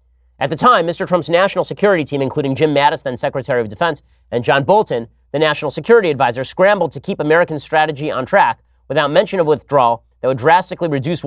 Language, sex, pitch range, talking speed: English, male, 120-170 Hz, 195 wpm